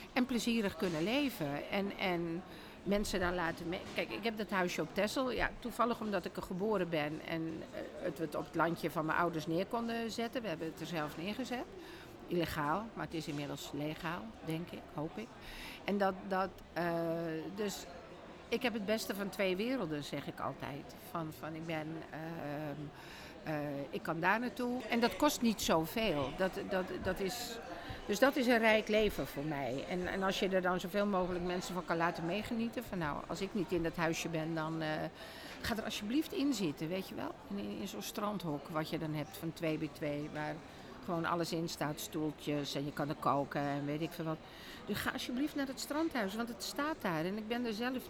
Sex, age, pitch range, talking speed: female, 50-69, 160-220 Hz, 205 wpm